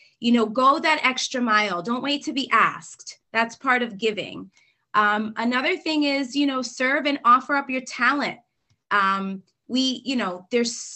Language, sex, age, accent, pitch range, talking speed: English, female, 20-39, American, 220-270 Hz, 175 wpm